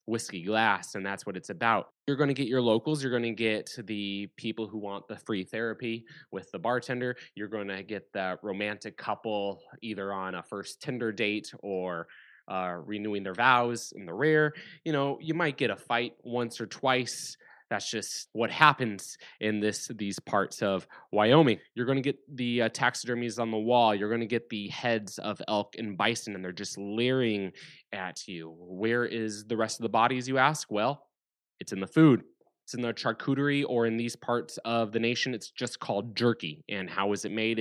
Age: 20-39